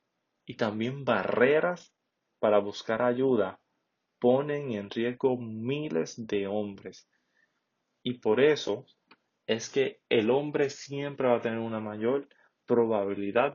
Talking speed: 115 wpm